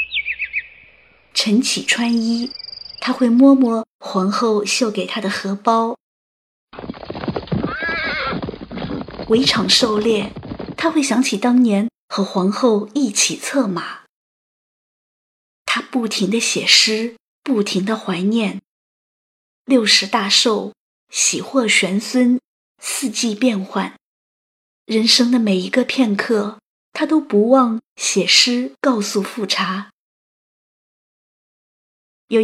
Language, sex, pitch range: Chinese, female, 205-265 Hz